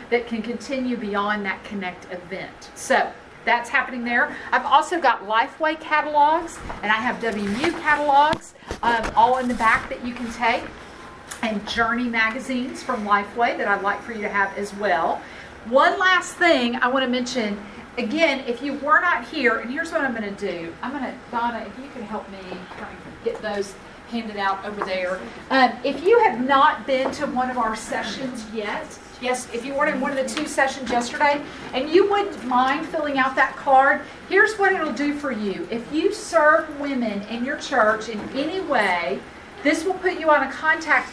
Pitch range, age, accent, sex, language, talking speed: 225-290 Hz, 40-59, American, female, English, 190 wpm